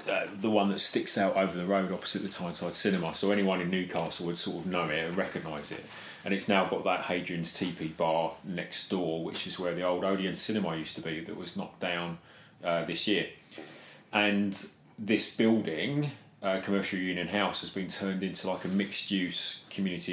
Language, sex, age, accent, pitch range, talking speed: English, male, 30-49, British, 85-95 Hz, 200 wpm